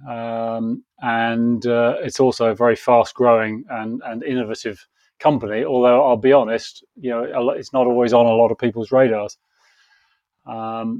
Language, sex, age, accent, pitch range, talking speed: English, male, 30-49, British, 115-135 Hz, 155 wpm